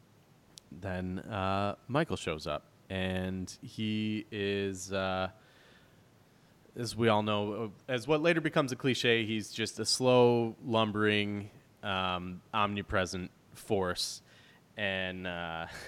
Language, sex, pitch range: English, male, 95-120 Hz